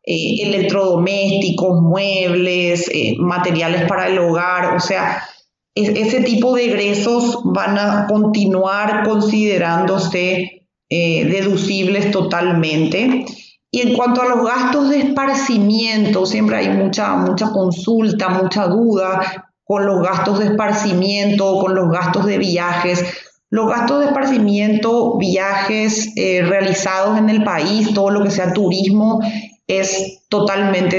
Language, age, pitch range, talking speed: Spanish, 30-49, 180-210 Hz, 120 wpm